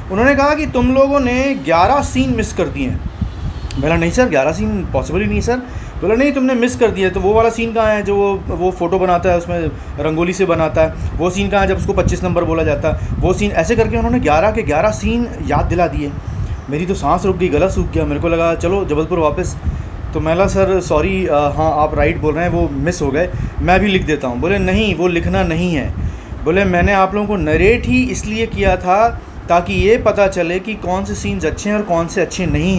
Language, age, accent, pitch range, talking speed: Hindi, 30-49, native, 165-230 Hz, 240 wpm